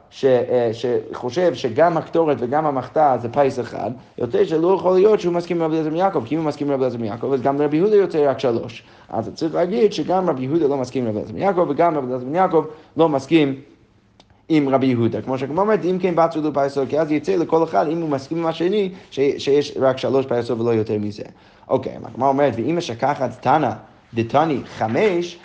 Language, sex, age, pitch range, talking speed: Hebrew, male, 30-49, 120-155 Hz, 190 wpm